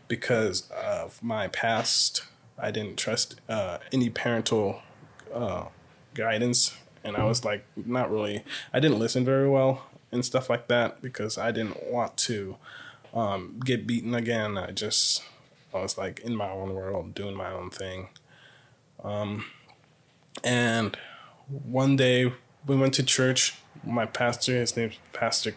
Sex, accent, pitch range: male, American, 110-130 Hz